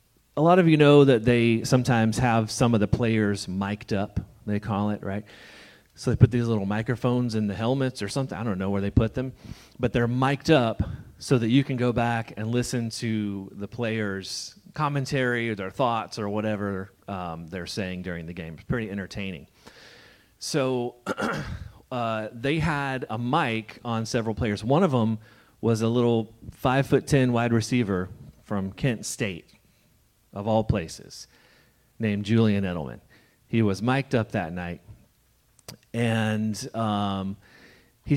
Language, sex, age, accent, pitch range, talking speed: English, male, 30-49, American, 105-130 Hz, 165 wpm